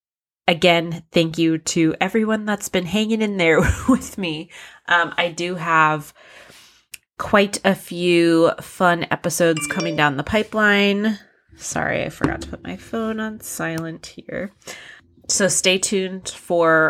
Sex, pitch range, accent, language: female, 160-190 Hz, American, English